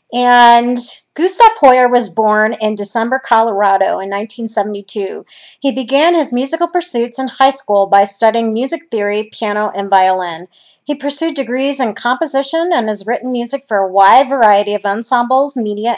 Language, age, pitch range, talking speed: English, 40-59, 215-265 Hz, 155 wpm